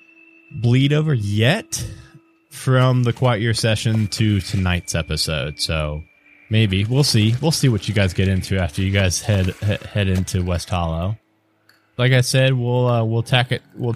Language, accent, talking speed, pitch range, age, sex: English, American, 170 wpm, 100-125 Hz, 20-39, male